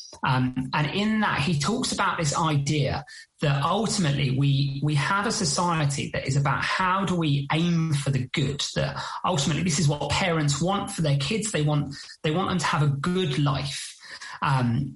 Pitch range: 140-170 Hz